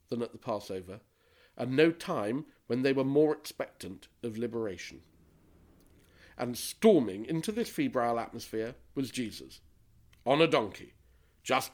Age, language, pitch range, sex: 40-59, English, 105-155 Hz, male